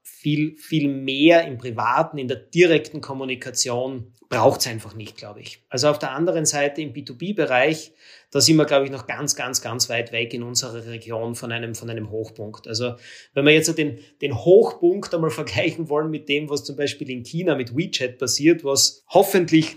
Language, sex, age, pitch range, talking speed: German, male, 30-49, 130-155 Hz, 190 wpm